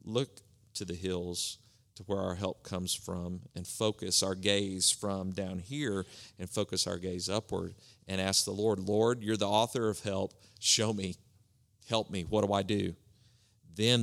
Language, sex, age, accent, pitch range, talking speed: English, male, 40-59, American, 95-115 Hz, 175 wpm